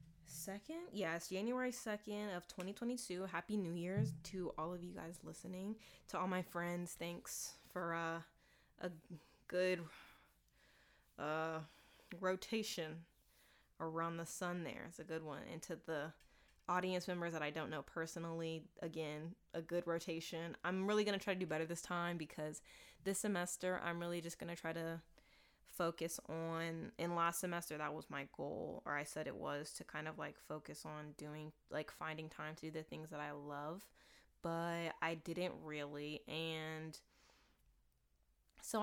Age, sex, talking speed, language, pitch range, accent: 20-39, female, 160 wpm, English, 160-180 Hz, American